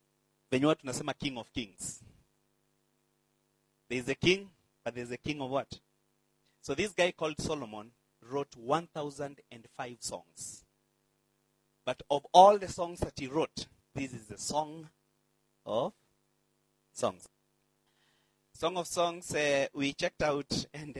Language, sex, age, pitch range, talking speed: English, male, 30-49, 95-150 Hz, 125 wpm